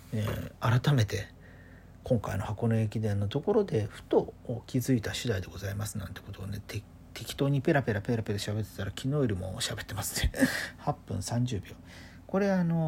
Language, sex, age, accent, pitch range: Japanese, male, 40-59, native, 95-135 Hz